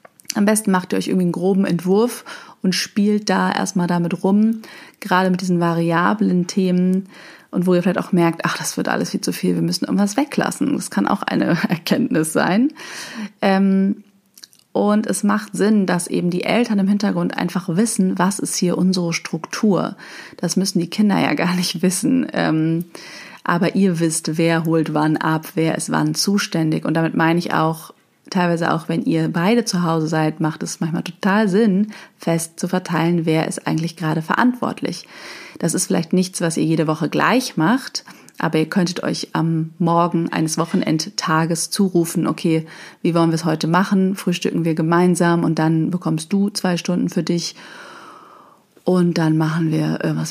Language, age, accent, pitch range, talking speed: German, 30-49, German, 165-200 Hz, 175 wpm